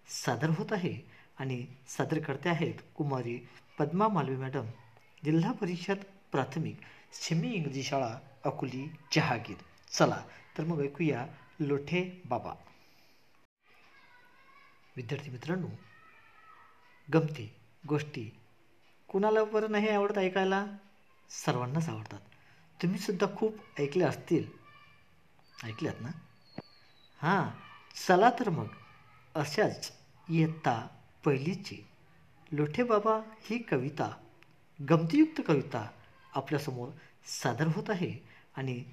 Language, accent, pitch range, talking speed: Marathi, native, 130-180 Hz, 90 wpm